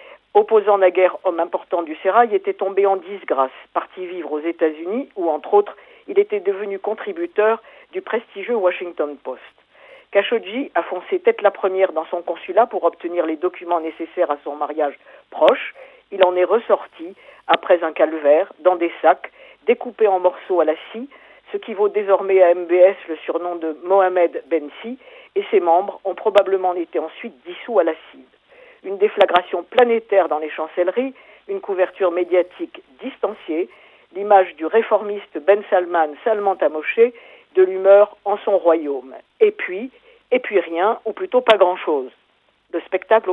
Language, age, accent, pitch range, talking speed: French, 50-69, French, 175-250 Hz, 160 wpm